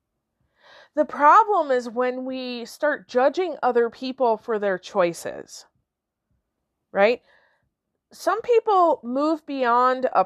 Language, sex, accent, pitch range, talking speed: English, female, American, 190-250 Hz, 105 wpm